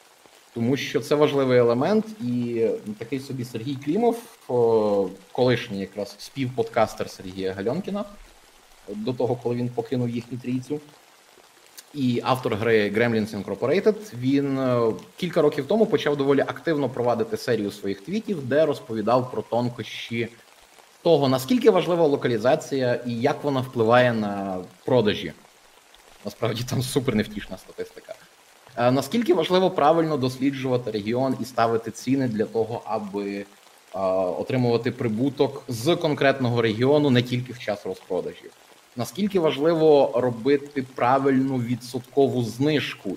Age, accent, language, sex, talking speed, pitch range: 30-49, native, Ukrainian, male, 115 wpm, 115-145 Hz